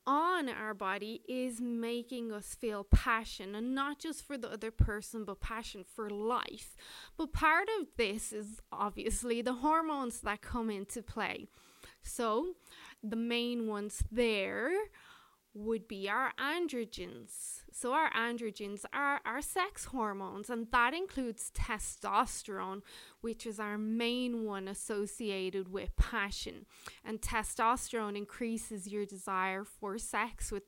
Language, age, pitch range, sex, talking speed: English, 20-39, 205-245 Hz, female, 130 wpm